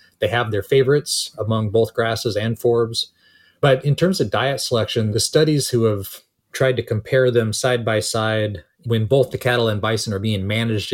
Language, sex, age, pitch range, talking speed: English, male, 30-49, 100-120 Hz, 190 wpm